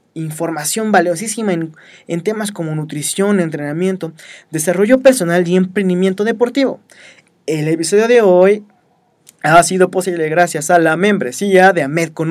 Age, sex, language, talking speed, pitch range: 20-39, male, Spanish, 130 wpm, 165-210 Hz